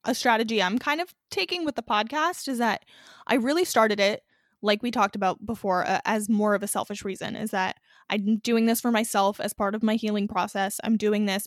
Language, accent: English, American